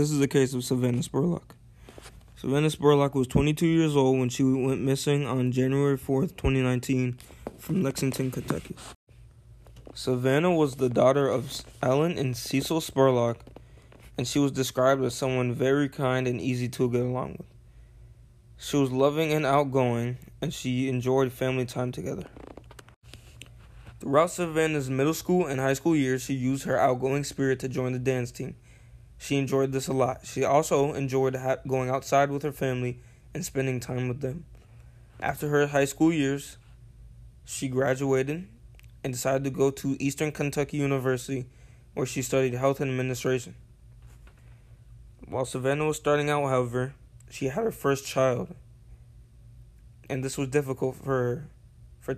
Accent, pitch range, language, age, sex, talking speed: American, 125-140 Hz, English, 20-39, male, 155 wpm